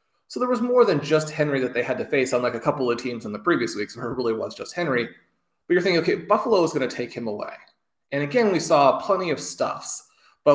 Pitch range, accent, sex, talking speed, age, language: 120-145 Hz, American, male, 275 wpm, 20-39, English